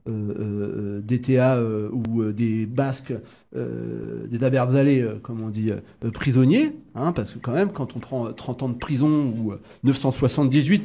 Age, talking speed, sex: 40-59, 185 wpm, male